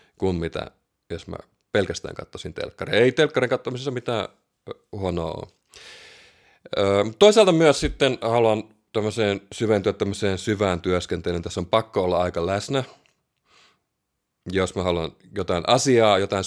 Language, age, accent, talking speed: Finnish, 30-49, native, 120 wpm